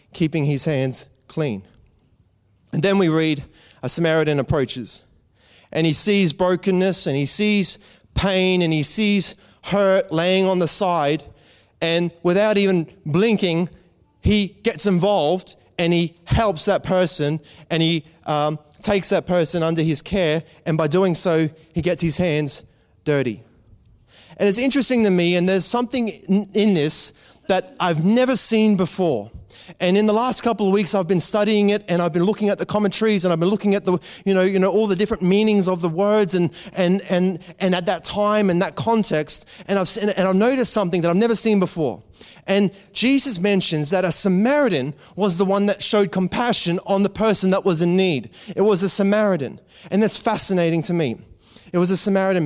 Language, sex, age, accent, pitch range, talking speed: English, male, 30-49, Australian, 160-205 Hz, 185 wpm